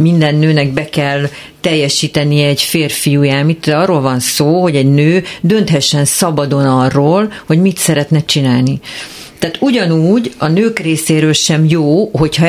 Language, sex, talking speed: Hungarian, female, 140 wpm